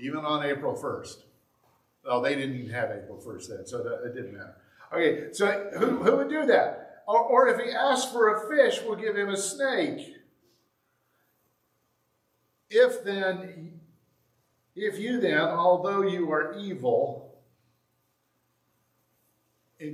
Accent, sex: American, male